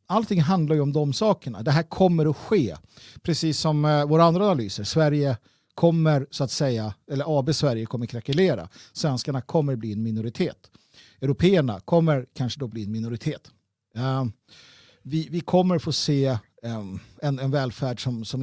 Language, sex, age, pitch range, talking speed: Swedish, male, 50-69, 125-170 Hz, 155 wpm